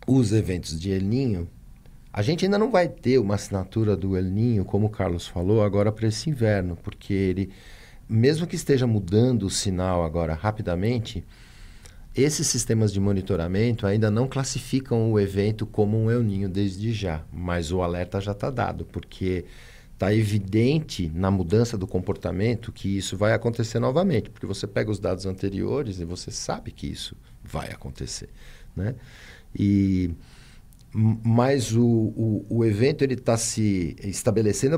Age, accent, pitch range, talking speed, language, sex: 50-69, Brazilian, 95-115 Hz, 155 wpm, English, male